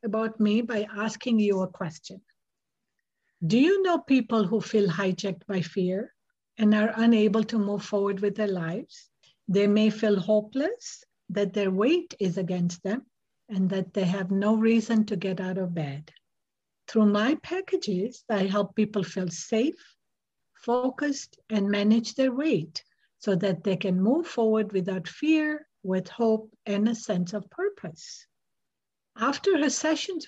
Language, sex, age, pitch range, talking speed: English, female, 60-79, 195-245 Hz, 155 wpm